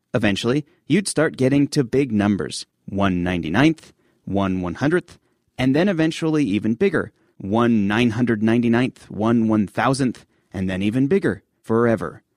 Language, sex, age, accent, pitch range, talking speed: English, male, 30-49, American, 105-140 Hz, 115 wpm